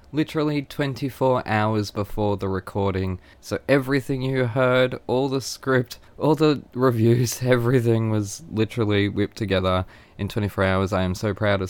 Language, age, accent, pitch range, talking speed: English, 20-39, Australian, 95-130 Hz, 150 wpm